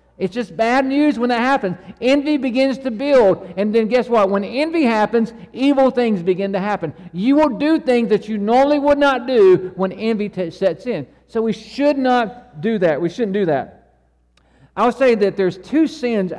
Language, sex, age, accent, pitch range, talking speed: English, male, 50-69, American, 180-245 Hz, 200 wpm